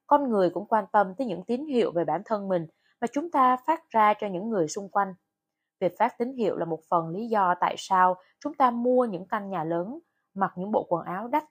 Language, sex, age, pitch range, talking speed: Vietnamese, female, 20-39, 180-245 Hz, 245 wpm